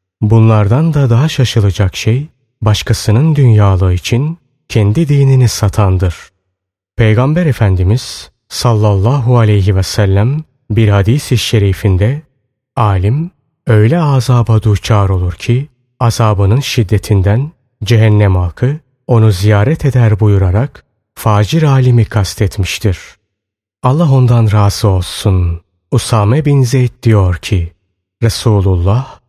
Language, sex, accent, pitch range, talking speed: Turkish, male, native, 100-130 Hz, 95 wpm